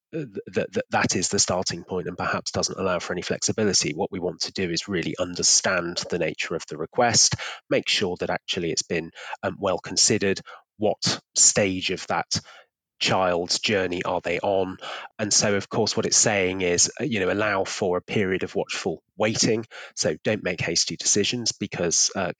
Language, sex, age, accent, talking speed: English, male, 30-49, British, 185 wpm